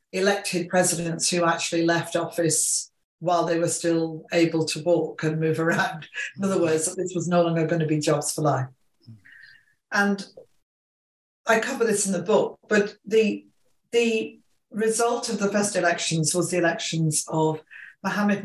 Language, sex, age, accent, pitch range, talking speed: English, female, 50-69, British, 160-190 Hz, 155 wpm